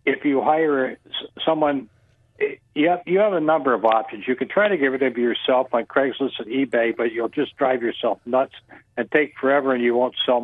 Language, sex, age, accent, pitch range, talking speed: English, male, 60-79, American, 125-155 Hz, 200 wpm